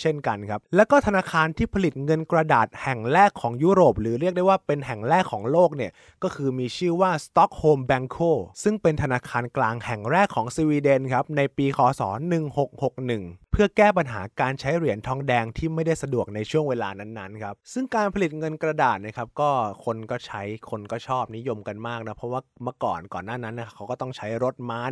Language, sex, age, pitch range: Thai, male, 20-39, 120-175 Hz